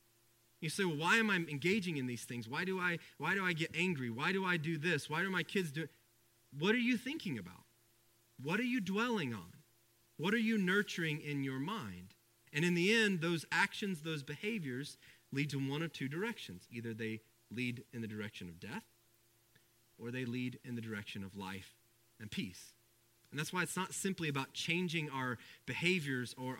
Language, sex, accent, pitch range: English, male, American, 115-170 Hz